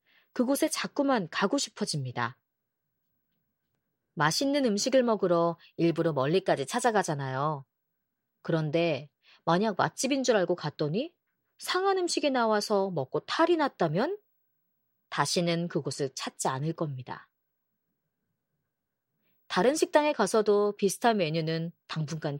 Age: 30-49